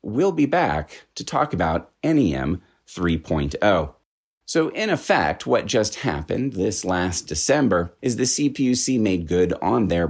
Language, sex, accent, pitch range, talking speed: English, male, American, 85-125 Hz, 145 wpm